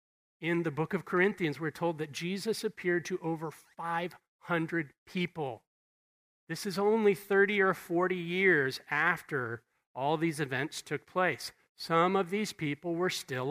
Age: 40-59